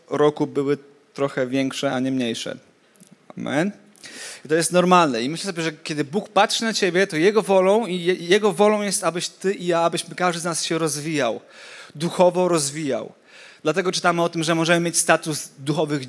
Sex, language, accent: male, Polish, native